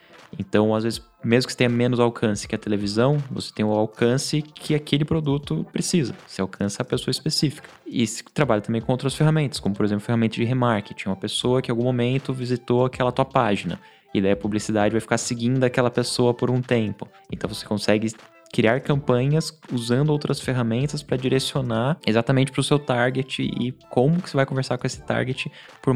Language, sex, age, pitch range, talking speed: Portuguese, male, 20-39, 105-130 Hz, 200 wpm